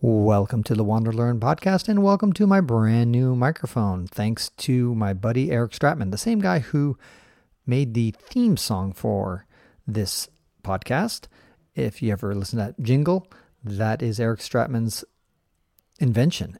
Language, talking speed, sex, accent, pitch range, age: English, 150 wpm, male, American, 105-130 Hz, 40-59